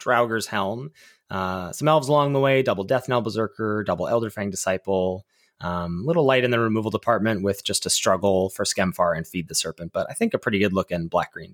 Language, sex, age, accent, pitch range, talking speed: English, male, 20-39, American, 100-140 Hz, 220 wpm